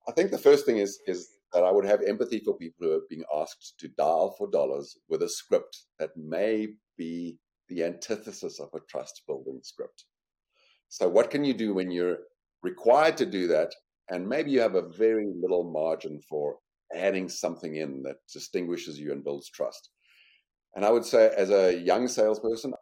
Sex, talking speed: male, 185 wpm